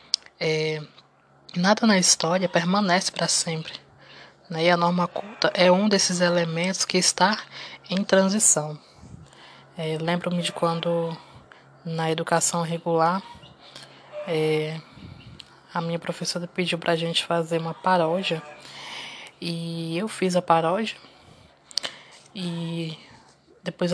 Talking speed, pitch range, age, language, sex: 115 wpm, 165-185 Hz, 20-39, Portuguese, female